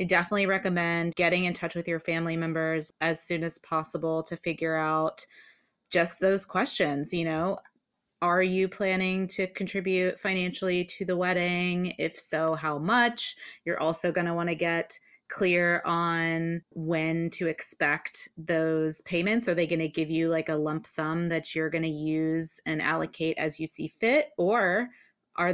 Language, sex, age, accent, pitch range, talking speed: English, female, 30-49, American, 160-185 Hz, 170 wpm